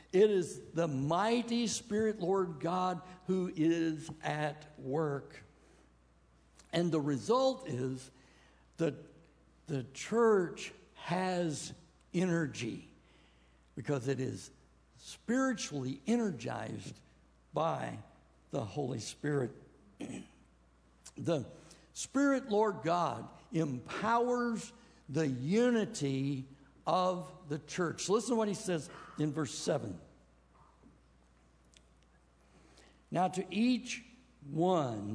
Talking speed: 85 wpm